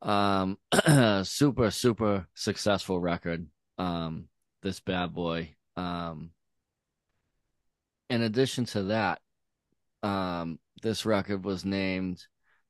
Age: 20-39